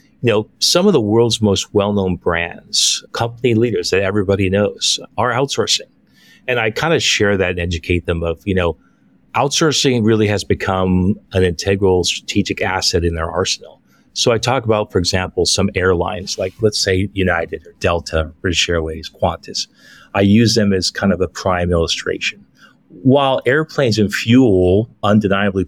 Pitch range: 90-105 Hz